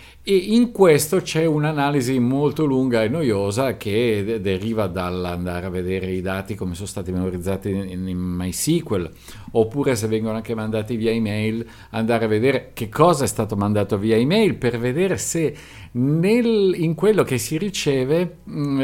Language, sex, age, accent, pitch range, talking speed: Italian, male, 50-69, native, 100-145 Hz, 155 wpm